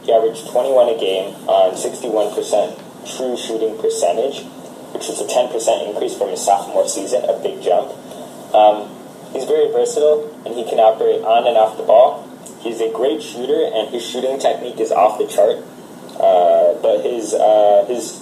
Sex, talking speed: male, 170 wpm